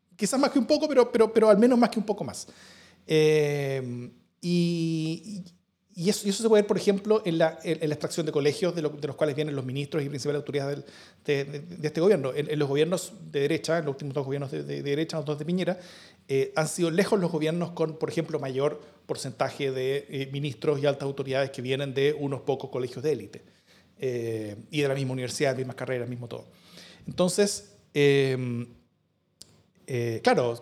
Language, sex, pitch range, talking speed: Spanish, male, 140-190 Hz, 215 wpm